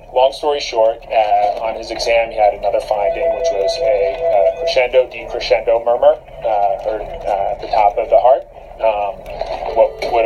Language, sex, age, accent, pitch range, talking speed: English, male, 30-49, American, 110-165 Hz, 165 wpm